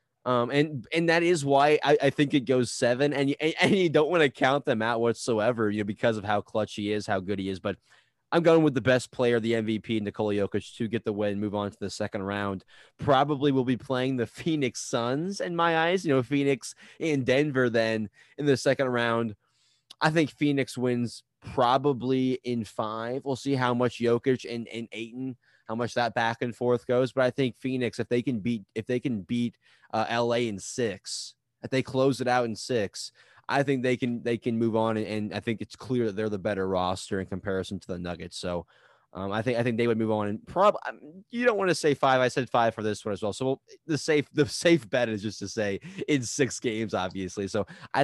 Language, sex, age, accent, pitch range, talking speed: English, male, 20-39, American, 110-135 Hz, 235 wpm